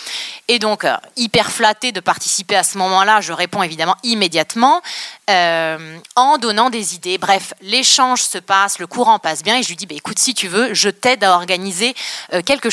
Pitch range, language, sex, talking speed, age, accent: 180-245 Hz, French, female, 190 wpm, 20-39, French